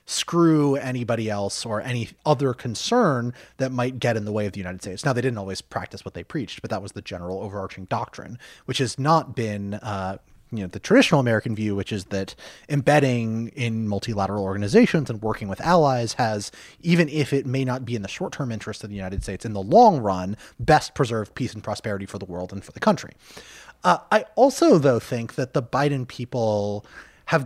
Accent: American